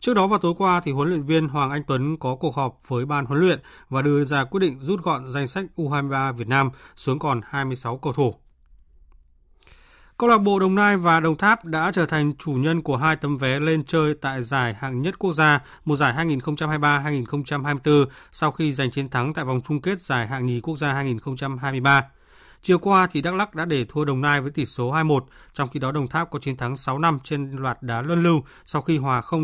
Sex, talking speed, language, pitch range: male, 225 wpm, Vietnamese, 135-165 Hz